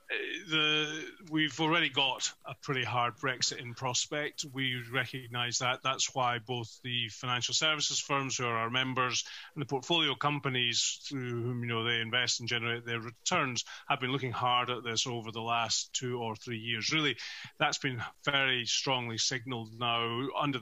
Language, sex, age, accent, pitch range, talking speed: English, male, 30-49, British, 120-140 Hz, 170 wpm